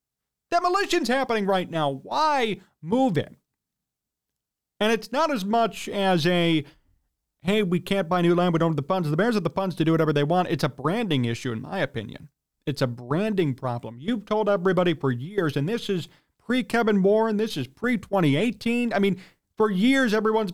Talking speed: 185 wpm